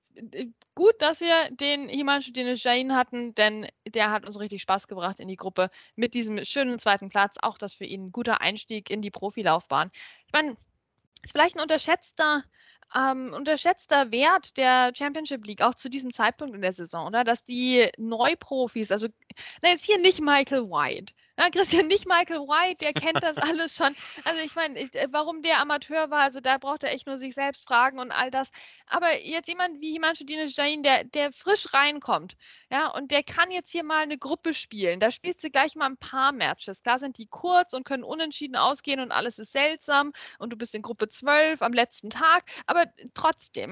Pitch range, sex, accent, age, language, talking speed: 240-315 Hz, female, German, 10-29, German, 200 wpm